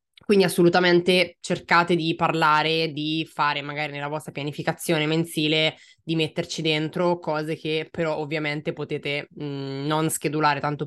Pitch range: 145-170 Hz